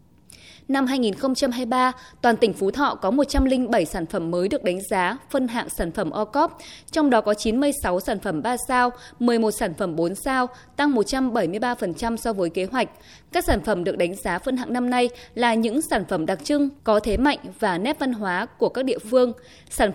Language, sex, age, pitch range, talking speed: Vietnamese, female, 20-39, 210-275 Hz, 200 wpm